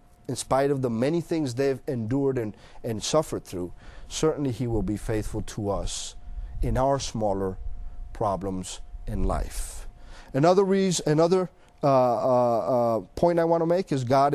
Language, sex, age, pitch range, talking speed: English, male, 40-59, 115-155 Hz, 155 wpm